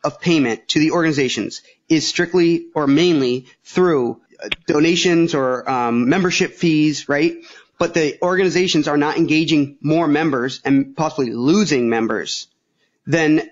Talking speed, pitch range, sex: 130 wpm, 135-165 Hz, male